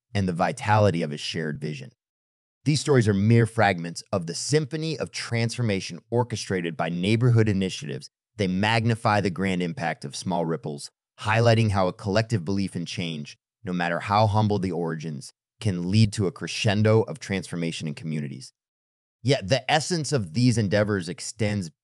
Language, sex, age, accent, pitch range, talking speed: English, male, 30-49, American, 85-115 Hz, 160 wpm